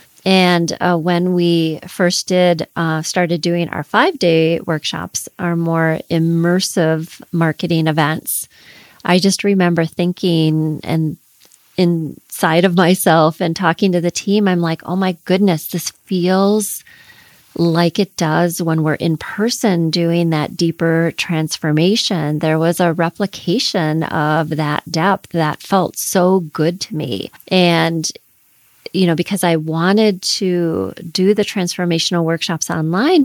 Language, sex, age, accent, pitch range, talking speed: English, female, 30-49, American, 165-185 Hz, 135 wpm